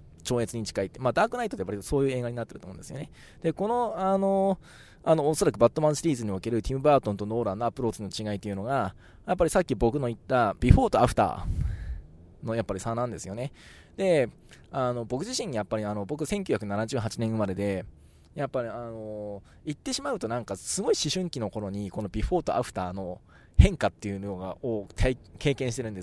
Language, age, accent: Japanese, 20-39, native